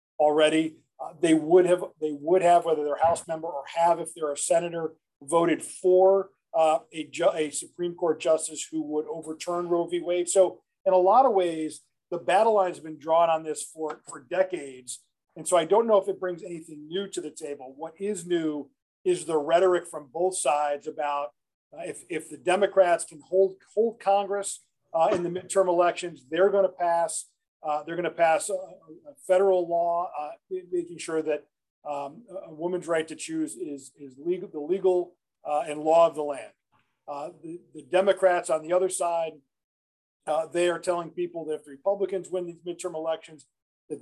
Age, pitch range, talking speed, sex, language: 40-59, 150-180 Hz, 195 wpm, male, English